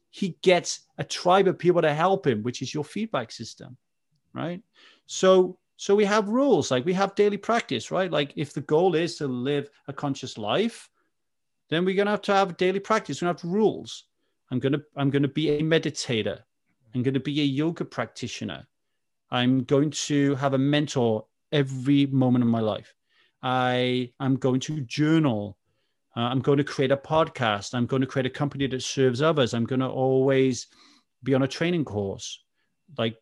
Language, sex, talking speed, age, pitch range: English, male, 185 wpm, 30-49, 120-155 Hz